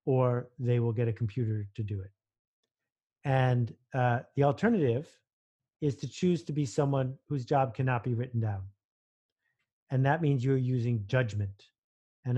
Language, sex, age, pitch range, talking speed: English, male, 50-69, 115-145 Hz, 155 wpm